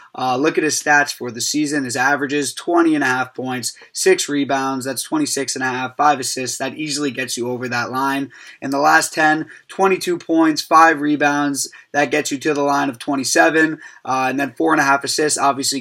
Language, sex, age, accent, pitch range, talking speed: English, male, 20-39, American, 135-155 Hz, 180 wpm